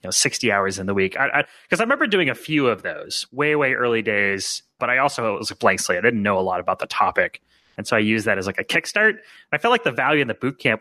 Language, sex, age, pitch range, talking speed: English, male, 30-49, 105-130 Hz, 290 wpm